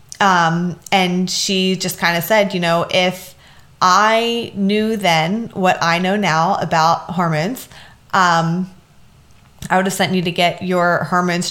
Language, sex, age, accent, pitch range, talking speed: English, female, 20-39, American, 165-195 Hz, 145 wpm